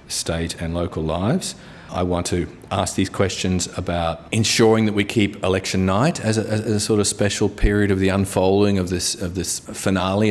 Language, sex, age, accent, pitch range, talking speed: English, male, 30-49, Australian, 90-105 Hz, 190 wpm